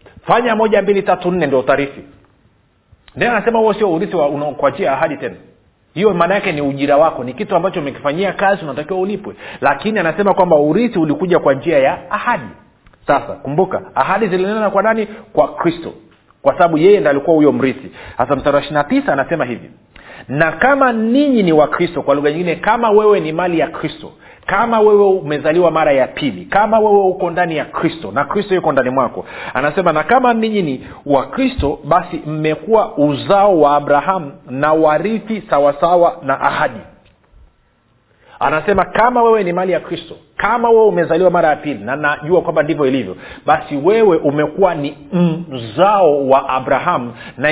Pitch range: 145-205 Hz